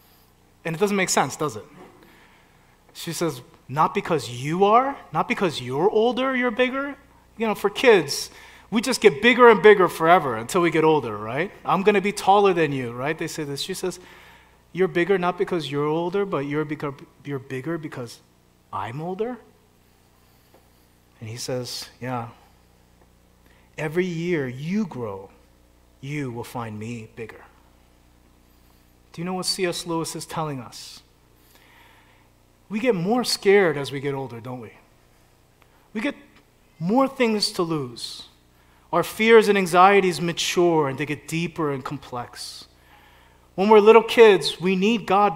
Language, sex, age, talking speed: English, male, 30-49, 155 wpm